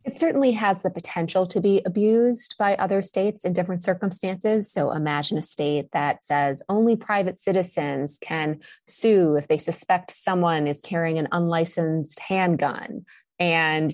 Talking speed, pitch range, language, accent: 150 wpm, 155-195 Hz, English, American